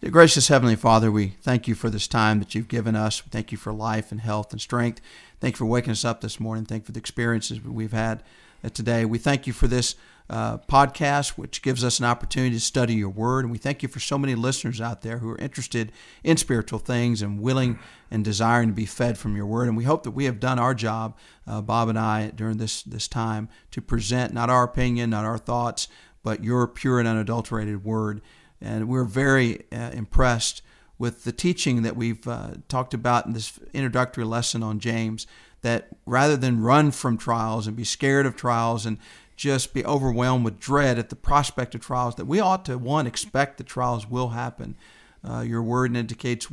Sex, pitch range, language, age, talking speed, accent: male, 110-130 Hz, English, 40-59, 215 wpm, American